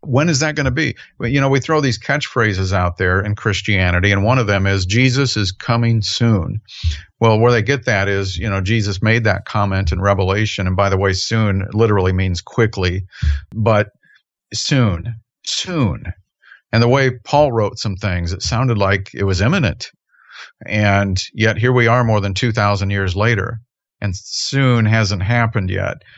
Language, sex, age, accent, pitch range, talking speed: English, male, 50-69, American, 95-120 Hz, 180 wpm